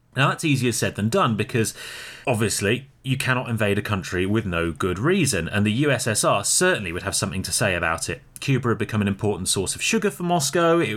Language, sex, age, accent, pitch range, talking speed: English, male, 30-49, British, 100-130 Hz, 215 wpm